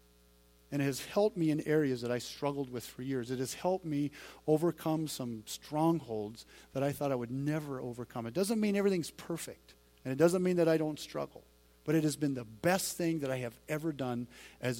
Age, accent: 40-59, American